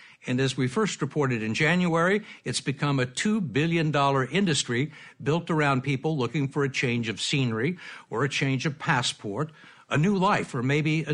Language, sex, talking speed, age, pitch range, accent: English, male, 180 wpm, 60-79, 125-170 Hz, American